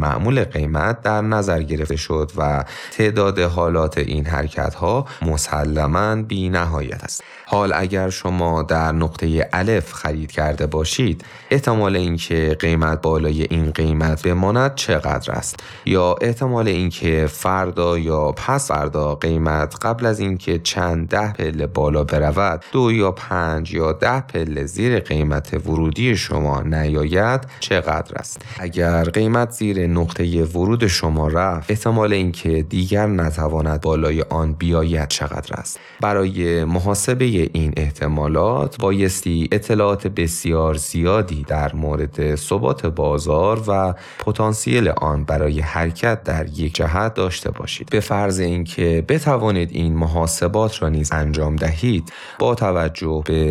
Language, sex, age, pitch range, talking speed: Persian, male, 30-49, 80-100 Hz, 125 wpm